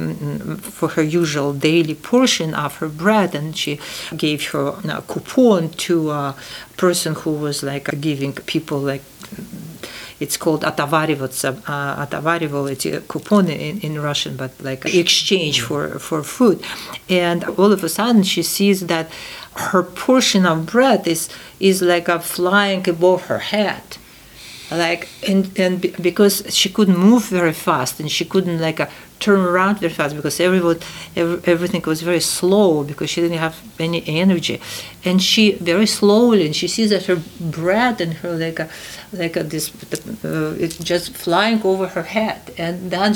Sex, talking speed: female, 160 wpm